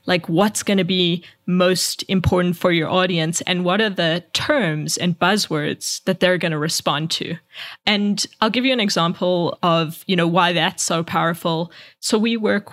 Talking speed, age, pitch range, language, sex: 185 wpm, 20-39, 165-200 Hz, English, female